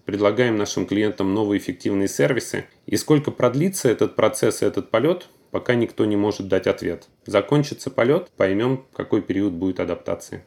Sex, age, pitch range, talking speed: male, 20-39, 100-125 Hz, 155 wpm